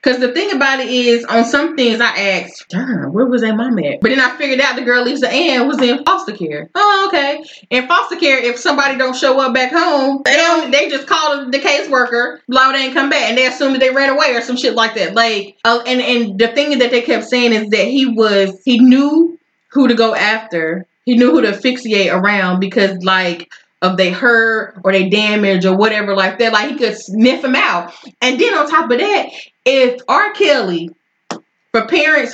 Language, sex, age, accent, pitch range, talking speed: English, female, 20-39, American, 210-275 Hz, 225 wpm